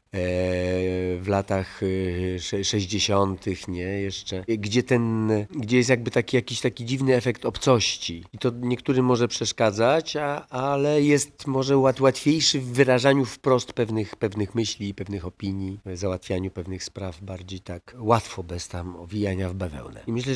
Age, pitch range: 40-59, 100-120 Hz